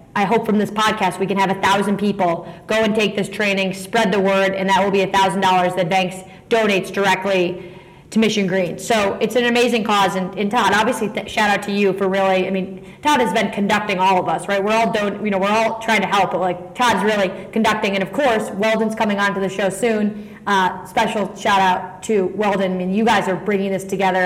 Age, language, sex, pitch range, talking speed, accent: 30-49, English, female, 190-220 Hz, 240 wpm, American